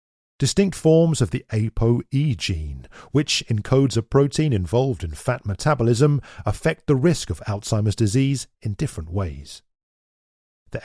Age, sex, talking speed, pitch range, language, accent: 40-59, male, 135 wpm, 95-140 Hz, English, British